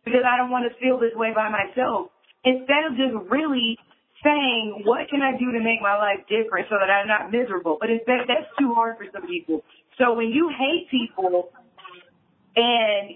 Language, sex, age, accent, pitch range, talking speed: English, female, 40-59, American, 215-270 Hz, 190 wpm